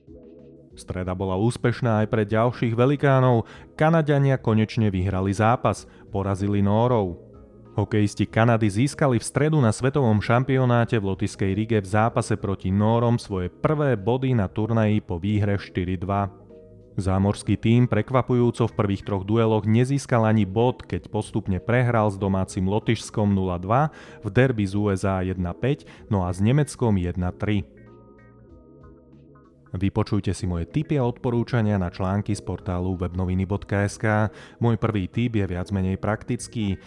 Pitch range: 95-120 Hz